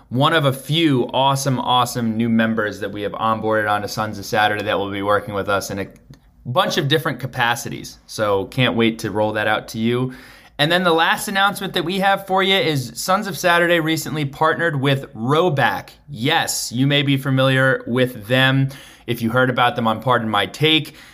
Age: 20-39